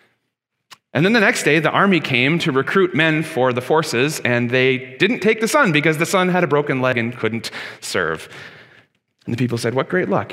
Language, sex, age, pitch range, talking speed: English, male, 30-49, 120-170 Hz, 215 wpm